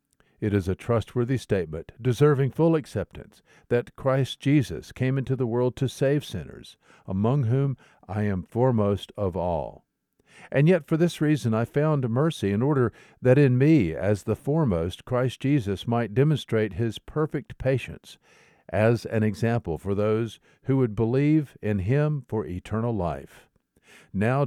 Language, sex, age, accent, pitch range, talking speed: English, male, 50-69, American, 105-140 Hz, 150 wpm